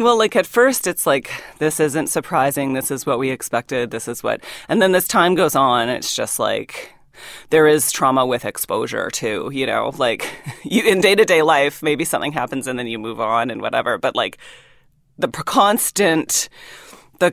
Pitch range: 135-165 Hz